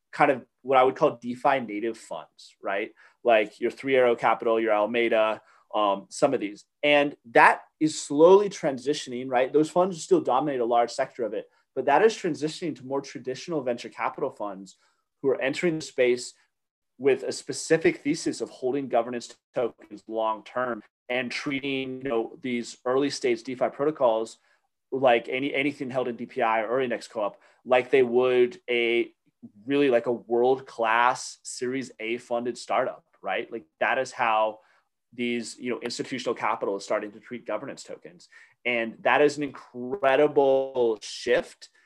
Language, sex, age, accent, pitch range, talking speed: English, male, 30-49, American, 120-145 Hz, 160 wpm